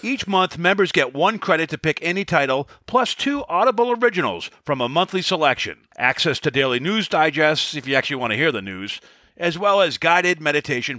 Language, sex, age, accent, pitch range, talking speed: English, male, 50-69, American, 140-195 Hz, 195 wpm